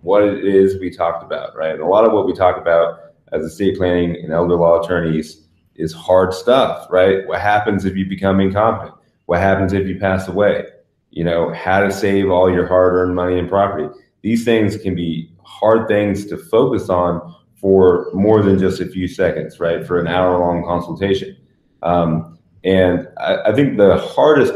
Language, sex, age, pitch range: English, male, 30-49, 90-100 Hz